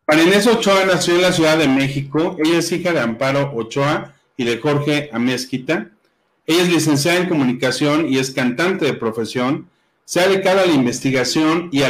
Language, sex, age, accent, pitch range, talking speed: Spanish, male, 40-59, Mexican, 125-170 Hz, 185 wpm